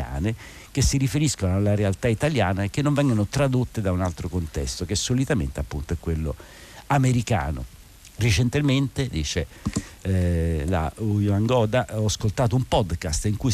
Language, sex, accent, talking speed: Italian, male, native, 150 wpm